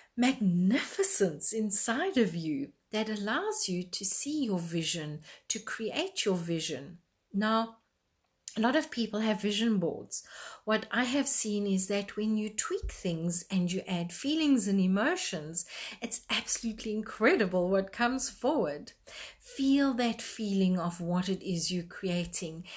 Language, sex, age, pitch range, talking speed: English, female, 50-69, 185-230 Hz, 140 wpm